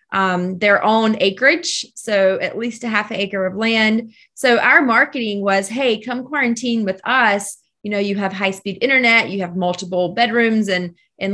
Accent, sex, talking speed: American, female, 175 wpm